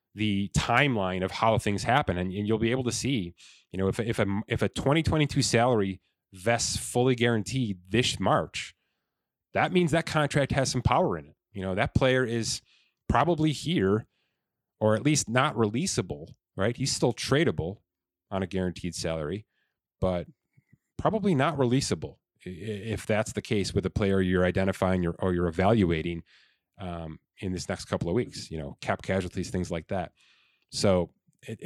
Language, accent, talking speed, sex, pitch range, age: English, American, 170 wpm, male, 95-120 Hz, 30-49